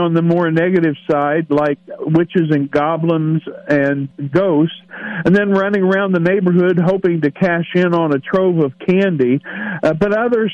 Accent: American